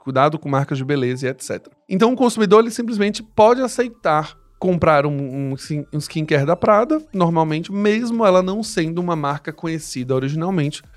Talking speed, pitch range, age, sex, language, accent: 165 wpm, 140-185 Hz, 20-39, male, Portuguese, Brazilian